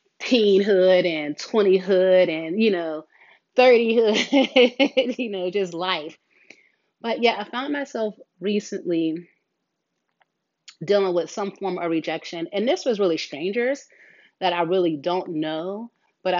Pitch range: 165-195 Hz